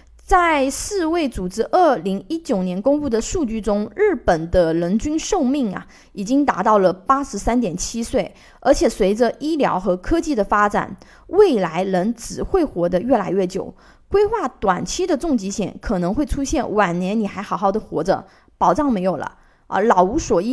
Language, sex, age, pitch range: Chinese, female, 20-39, 195-275 Hz